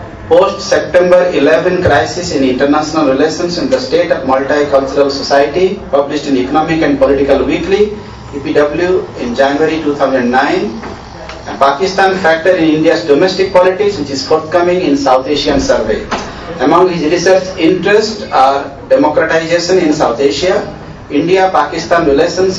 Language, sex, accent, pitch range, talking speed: English, male, Indian, 140-175 Hz, 120 wpm